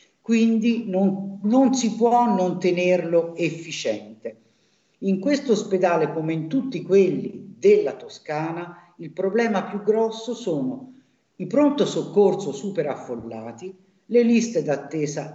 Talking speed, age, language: 115 wpm, 50-69, Italian